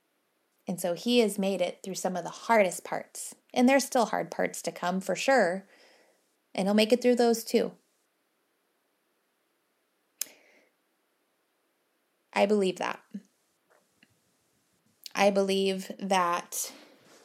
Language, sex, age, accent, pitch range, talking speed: English, female, 20-39, American, 175-225 Hz, 120 wpm